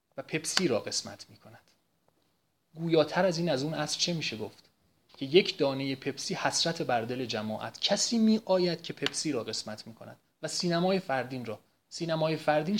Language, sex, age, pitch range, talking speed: Persian, male, 30-49, 125-165 Hz, 170 wpm